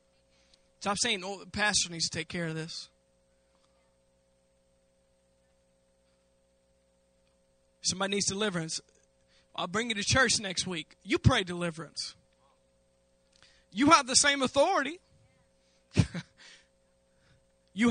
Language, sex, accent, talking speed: English, male, American, 100 wpm